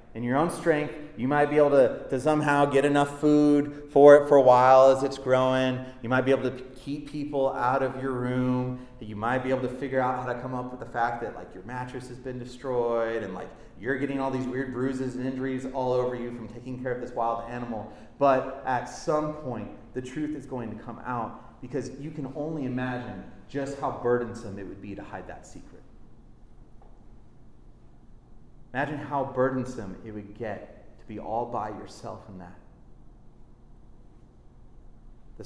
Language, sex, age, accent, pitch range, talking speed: English, male, 30-49, American, 115-135 Hz, 195 wpm